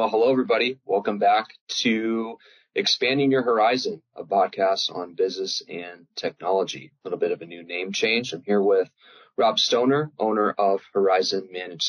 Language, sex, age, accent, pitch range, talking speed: English, male, 20-39, American, 95-145 Hz, 160 wpm